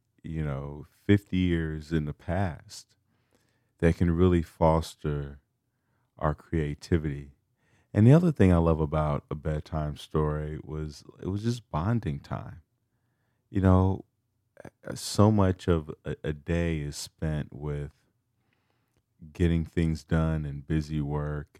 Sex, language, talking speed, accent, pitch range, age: male, English, 130 wpm, American, 75-105 Hz, 30-49